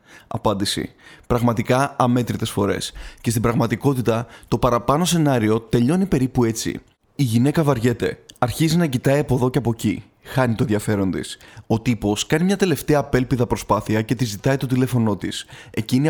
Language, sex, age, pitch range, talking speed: Greek, male, 20-39, 115-140 Hz, 155 wpm